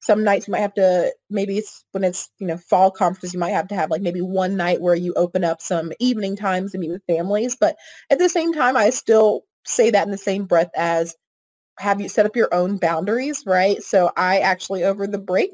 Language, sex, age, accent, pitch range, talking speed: English, female, 30-49, American, 170-205 Hz, 240 wpm